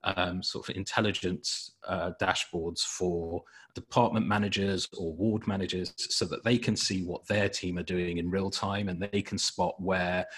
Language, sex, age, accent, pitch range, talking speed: English, male, 30-49, British, 90-105 Hz, 175 wpm